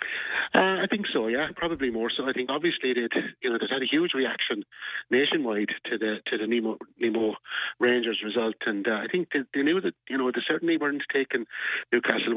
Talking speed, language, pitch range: 210 wpm, English, 110-125 Hz